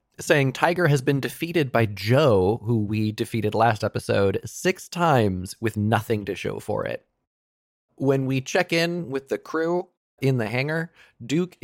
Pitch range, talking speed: 110-150 Hz, 160 wpm